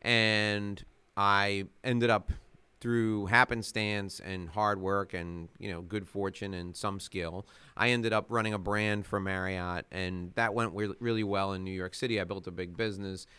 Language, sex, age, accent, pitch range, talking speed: English, male, 30-49, American, 90-115 Hz, 175 wpm